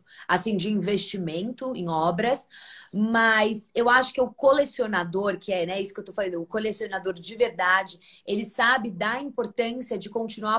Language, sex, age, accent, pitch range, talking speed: Portuguese, female, 20-39, Brazilian, 185-230 Hz, 165 wpm